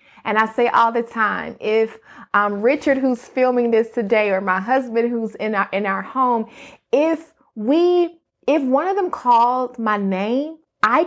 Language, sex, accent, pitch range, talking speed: English, female, American, 215-260 Hz, 175 wpm